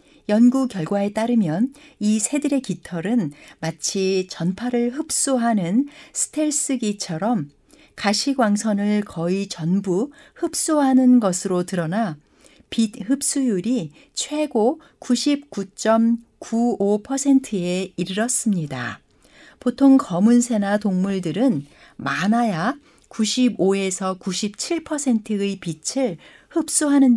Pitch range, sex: 190-260 Hz, female